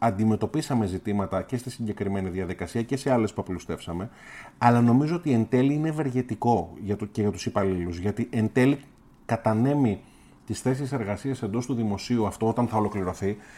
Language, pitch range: Greek, 105-140 Hz